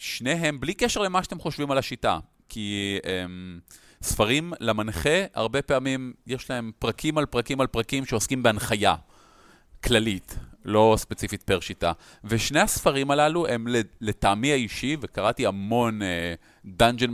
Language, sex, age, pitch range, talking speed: Hebrew, male, 30-49, 105-140 Hz, 130 wpm